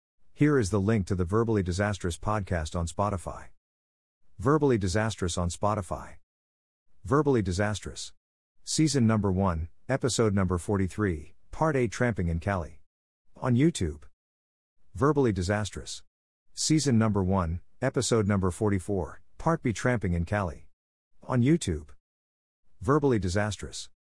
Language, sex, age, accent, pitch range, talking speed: English, male, 50-69, American, 85-115 Hz, 115 wpm